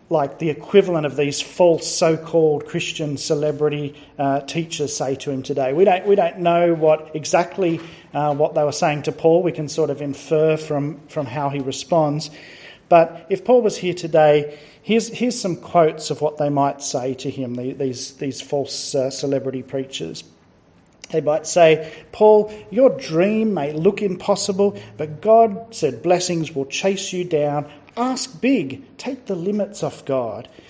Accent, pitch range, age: Australian, 145-185 Hz, 40-59